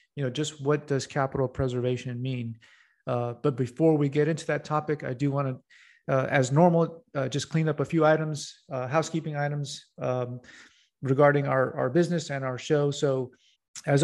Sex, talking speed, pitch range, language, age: male, 180 wpm, 130-150 Hz, English, 40-59